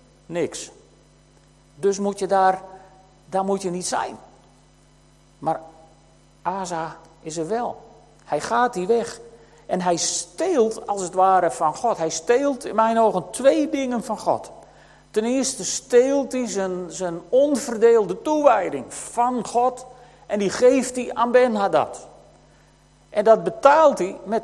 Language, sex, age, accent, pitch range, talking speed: Dutch, male, 50-69, Dutch, 185-245 Hz, 140 wpm